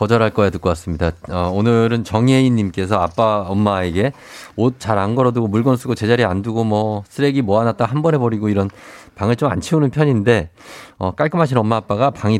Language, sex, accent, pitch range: Korean, male, native, 95-135 Hz